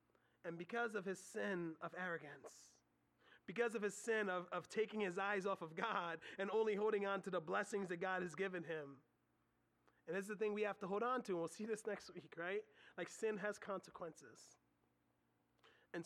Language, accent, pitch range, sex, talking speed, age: English, American, 185-235 Hz, male, 200 wpm, 30-49